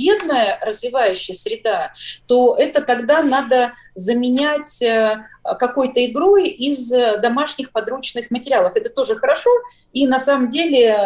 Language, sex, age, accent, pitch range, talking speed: Russian, female, 30-49, native, 200-305 Hz, 115 wpm